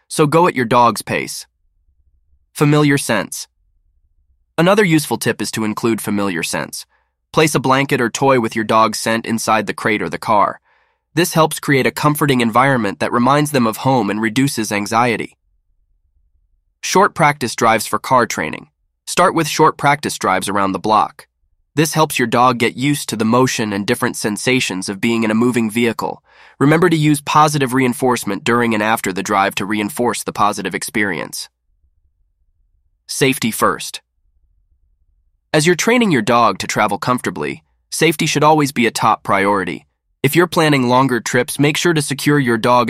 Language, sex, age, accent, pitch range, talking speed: English, male, 20-39, American, 95-140 Hz, 170 wpm